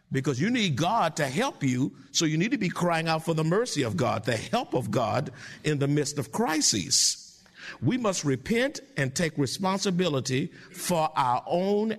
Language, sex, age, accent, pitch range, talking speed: English, male, 50-69, American, 150-220 Hz, 185 wpm